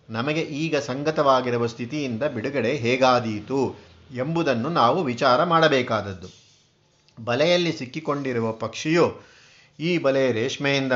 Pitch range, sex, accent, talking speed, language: 115-145 Hz, male, native, 90 wpm, Kannada